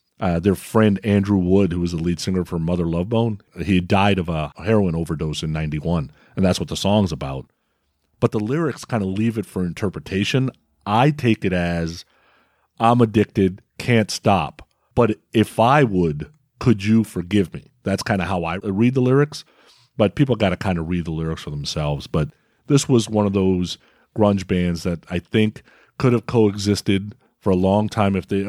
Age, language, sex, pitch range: 40-59, English, male, 90-115 Hz